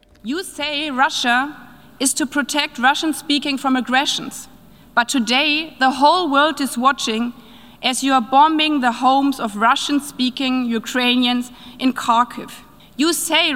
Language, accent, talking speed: Finnish, German, 130 wpm